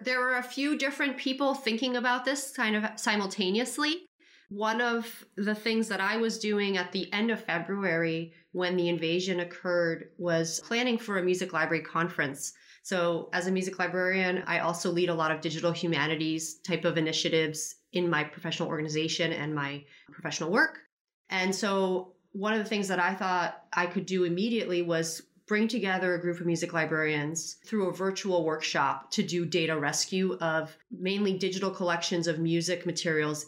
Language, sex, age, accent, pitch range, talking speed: English, female, 30-49, American, 160-190 Hz, 170 wpm